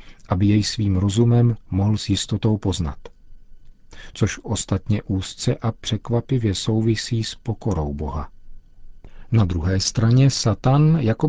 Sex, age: male, 50-69